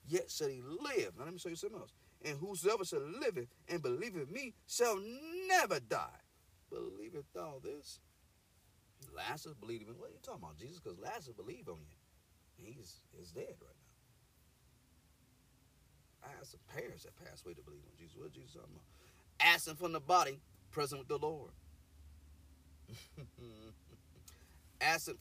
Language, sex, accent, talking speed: English, male, American, 160 wpm